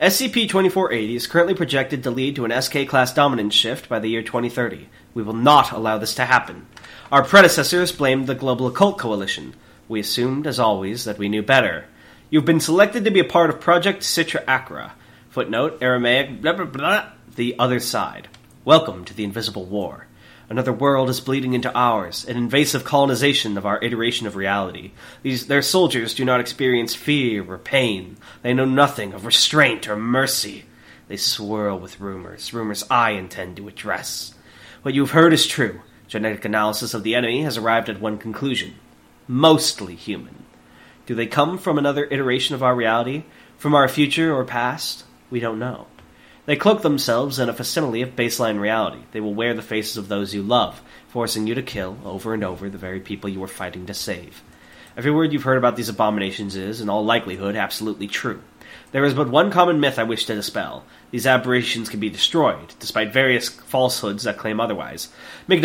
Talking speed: 185 wpm